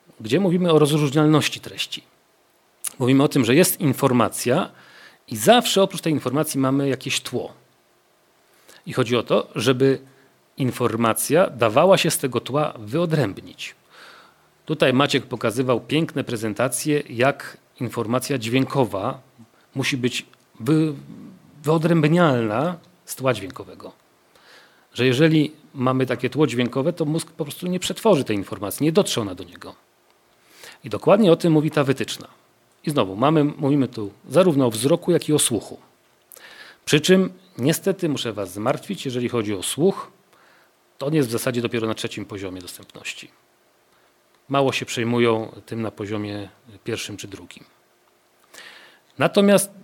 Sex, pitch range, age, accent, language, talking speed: male, 120-155 Hz, 40-59, native, Polish, 135 wpm